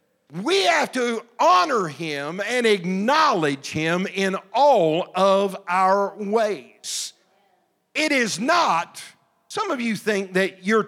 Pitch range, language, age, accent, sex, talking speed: 190-270 Hz, English, 50-69, American, male, 120 wpm